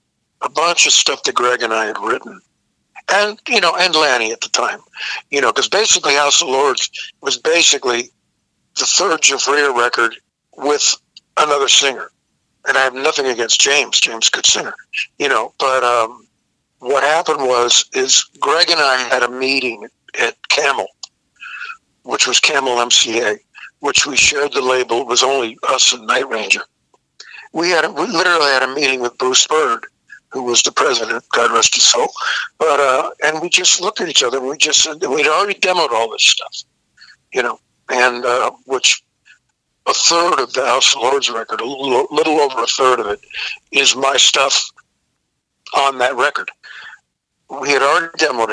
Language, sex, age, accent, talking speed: English, male, 60-79, American, 175 wpm